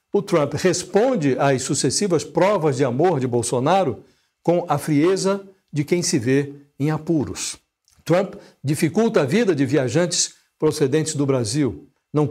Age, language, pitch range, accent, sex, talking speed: 60-79, Portuguese, 140-175 Hz, Brazilian, male, 140 wpm